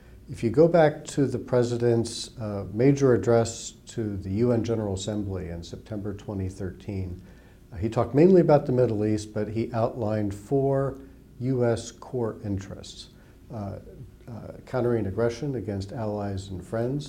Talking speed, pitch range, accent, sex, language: 145 wpm, 100-120 Hz, American, male, English